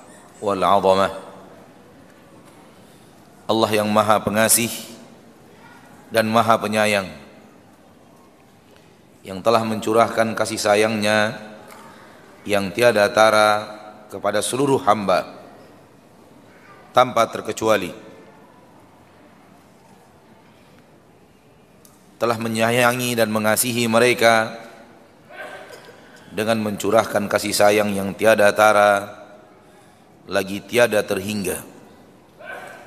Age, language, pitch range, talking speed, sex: 30-49, Indonesian, 105-115 Hz, 65 wpm, male